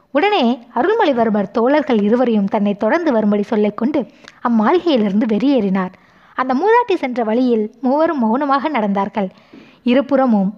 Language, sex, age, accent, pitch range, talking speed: Tamil, female, 20-39, native, 215-275 Hz, 110 wpm